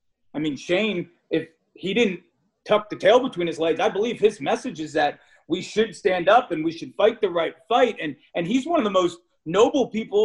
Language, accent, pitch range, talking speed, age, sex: English, American, 165-245 Hz, 225 wpm, 30-49, male